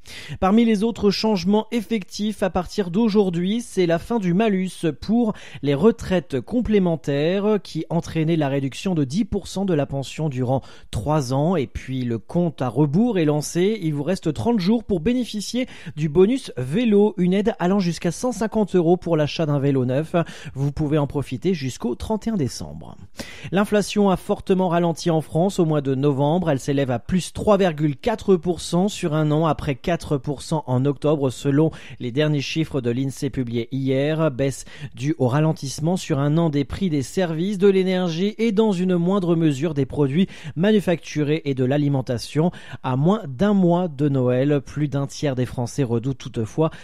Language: French